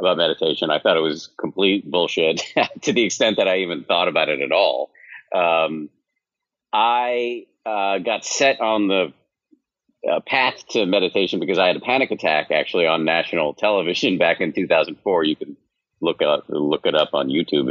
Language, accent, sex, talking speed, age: English, American, male, 175 wpm, 50-69